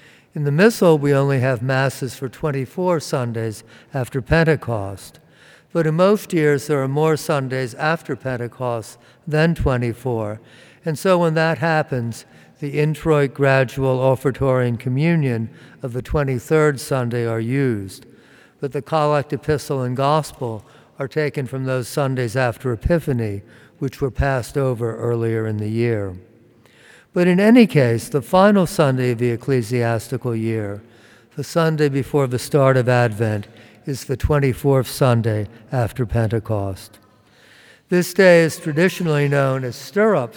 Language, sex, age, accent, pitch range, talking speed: English, male, 60-79, American, 120-150 Hz, 140 wpm